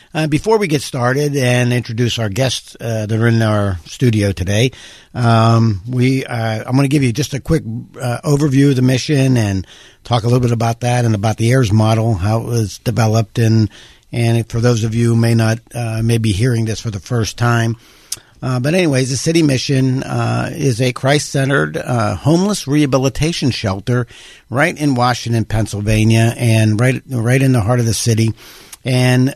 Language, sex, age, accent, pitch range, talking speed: English, male, 60-79, American, 110-135 Hz, 190 wpm